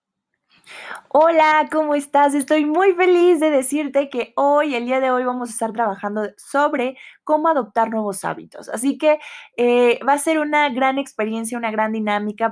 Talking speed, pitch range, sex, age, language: 170 wpm, 215-275 Hz, female, 20-39, Spanish